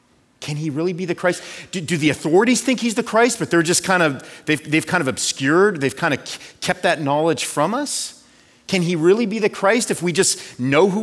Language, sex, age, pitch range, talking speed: English, male, 40-59, 145-220 Hz, 240 wpm